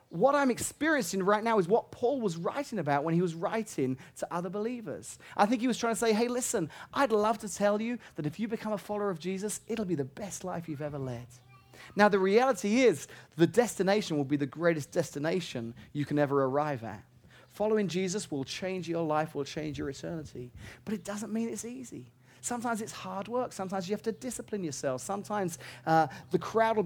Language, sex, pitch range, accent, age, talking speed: English, male, 155-220 Hz, British, 30-49, 210 wpm